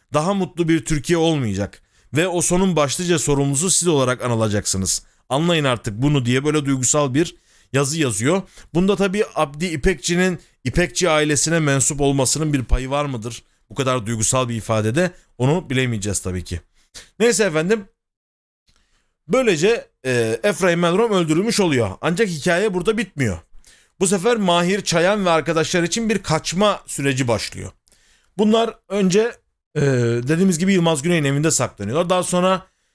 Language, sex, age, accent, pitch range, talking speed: Turkish, male, 40-59, native, 130-185 Hz, 140 wpm